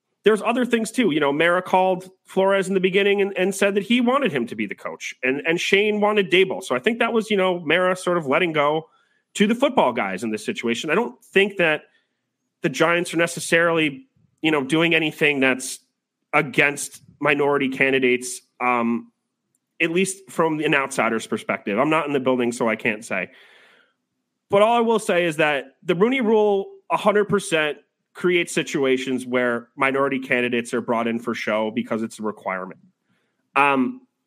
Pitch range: 130-190 Hz